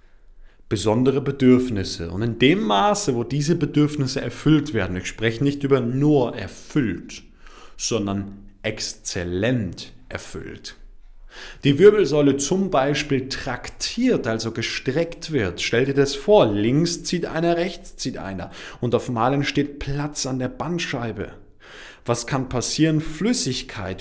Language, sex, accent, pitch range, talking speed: German, male, German, 120-150 Hz, 125 wpm